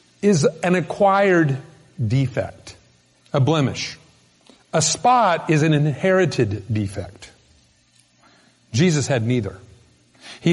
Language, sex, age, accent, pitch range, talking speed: English, male, 50-69, American, 125-175 Hz, 90 wpm